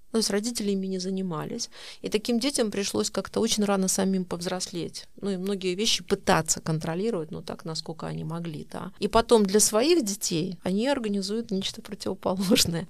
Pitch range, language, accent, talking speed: 185-230 Hz, Russian, native, 165 wpm